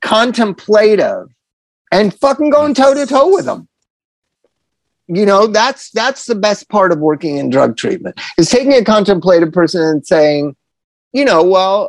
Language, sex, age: English, male, 30-49